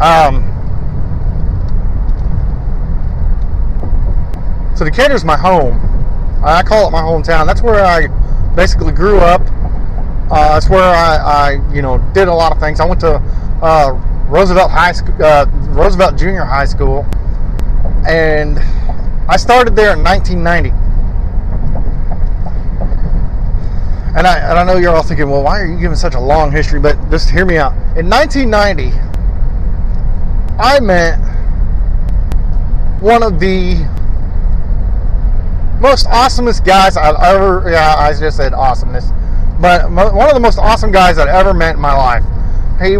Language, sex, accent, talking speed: English, male, American, 140 wpm